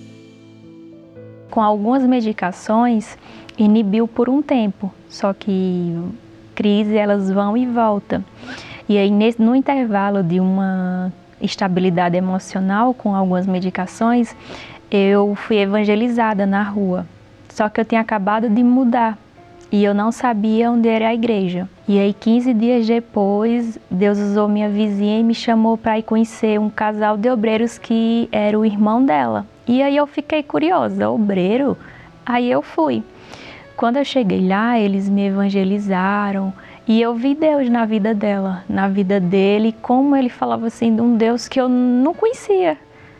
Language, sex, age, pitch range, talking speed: Portuguese, female, 10-29, 200-240 Hz, 150 wpm